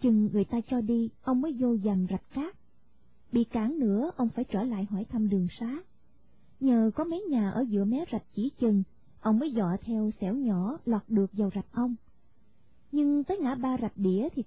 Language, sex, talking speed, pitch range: Vietnamese, female, 205 wpm, 210-265 Hz